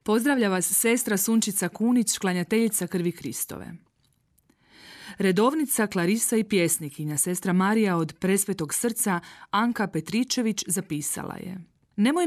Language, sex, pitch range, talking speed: Croatian, female, 170-225 Hz, 110 wpm